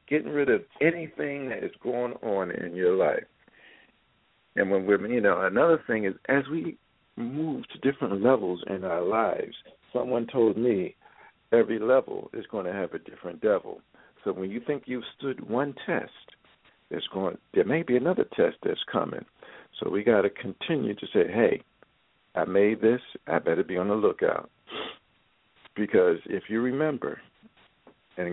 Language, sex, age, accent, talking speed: English, male, 50-69, American, 165 wpm